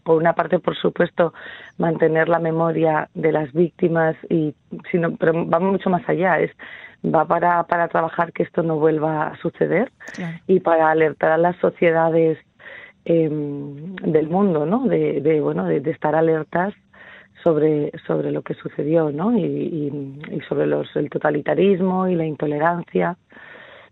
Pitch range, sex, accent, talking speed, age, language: 155-175 Hz, female, Spanish, 155 wpm, 40-59, Spanish